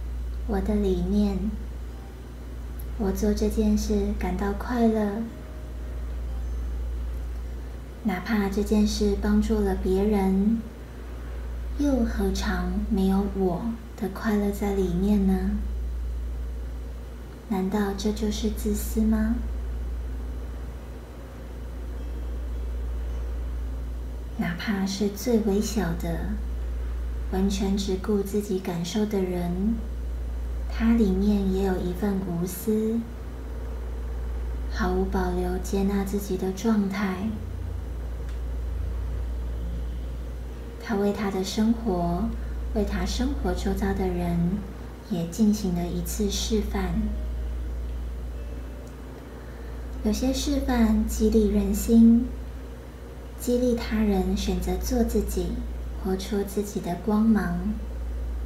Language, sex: Chinese, male